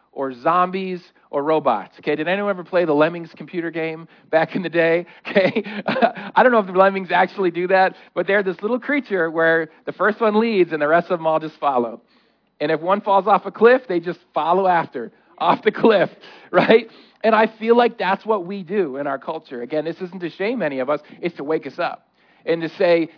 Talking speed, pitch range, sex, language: 225 wpm, 150-205 Hz, male, English